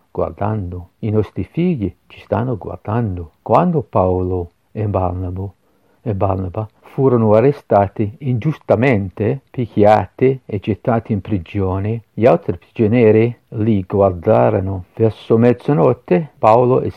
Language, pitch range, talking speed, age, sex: Italian, 100-120 Hz, 105 wpm, 50-69, male